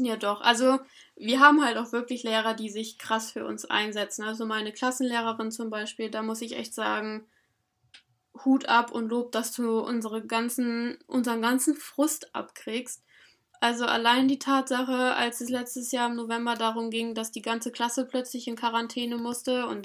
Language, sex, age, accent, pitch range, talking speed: German, female, 10-29, German, 230-255 Hz, 170 wpm